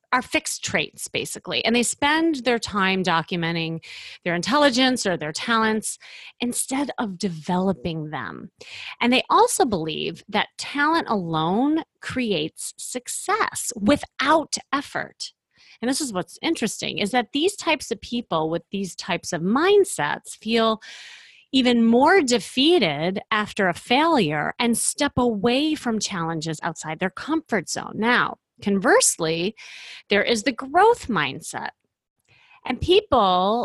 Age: 30-49